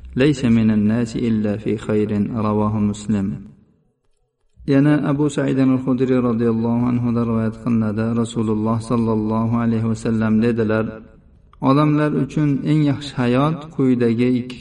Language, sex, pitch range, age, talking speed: Bulgarian, male, 110-135 Hz, 50-69, 120 wpm